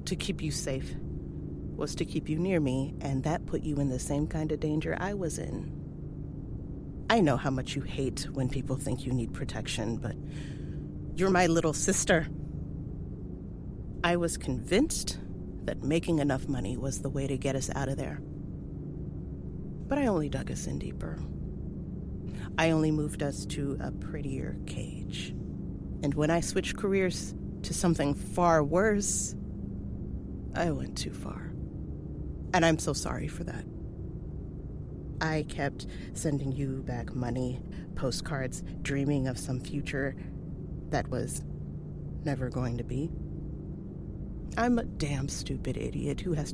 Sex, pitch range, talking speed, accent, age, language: female, 120-160 Hz, 145 wpm, American, 30-49, English